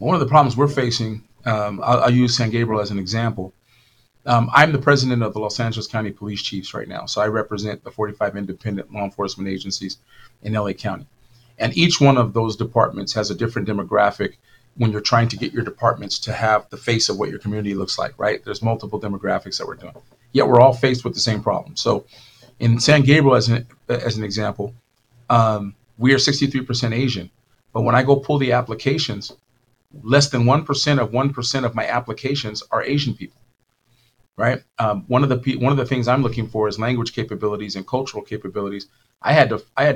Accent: American